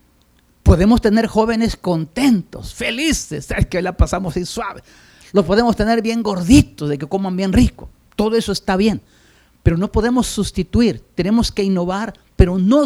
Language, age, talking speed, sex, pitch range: Spanish, 50-69, 160 wpm, male, 145-225 Hz